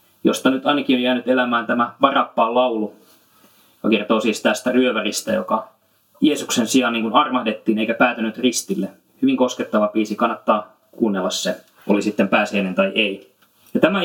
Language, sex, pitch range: Finnish, male, 110-130 Hz